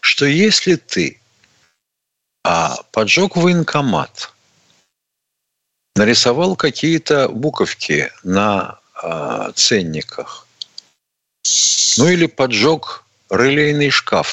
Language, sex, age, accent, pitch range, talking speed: Russian, male, 50-69, native, 115-160 Hz, 70 wpm